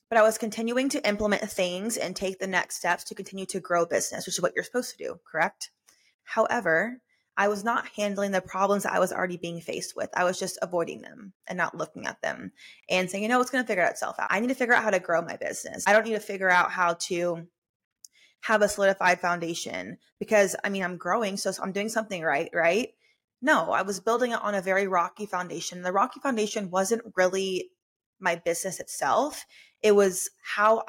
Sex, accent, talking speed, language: female, American, 220 wpm, English